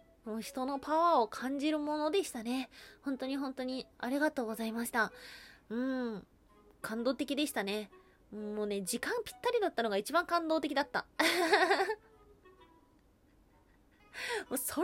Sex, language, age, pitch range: female, Japanese, 20-39, 220-325 Hz